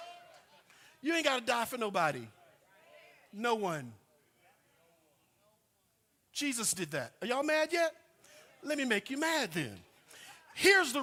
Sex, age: male, 50-69